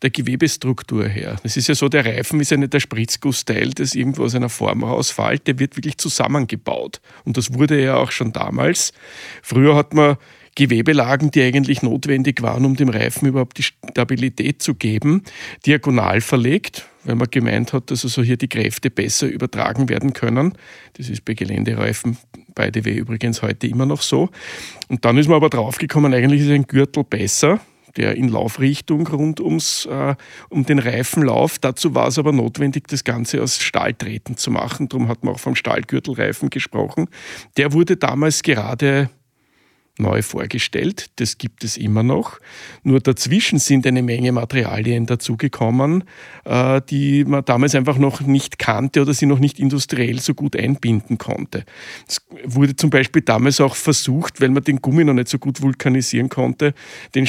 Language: German